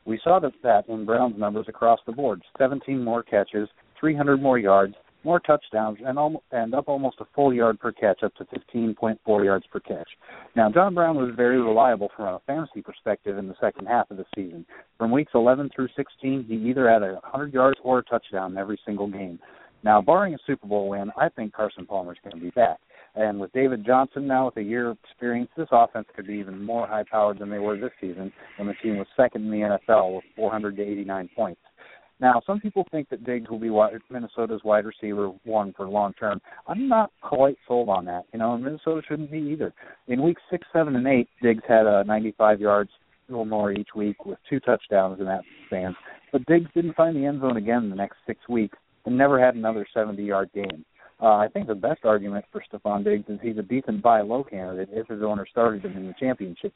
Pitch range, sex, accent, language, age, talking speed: 100-125 Hz, male, American, English, 50-69, 215 wpm